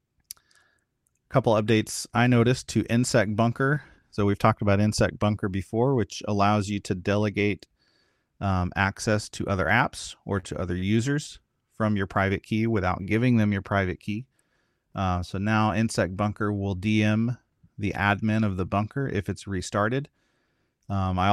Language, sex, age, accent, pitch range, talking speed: English, male, 30-49, American, 95-110 Hz, 155 wpm